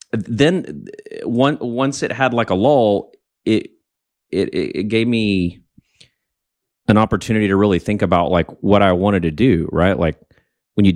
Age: 30-49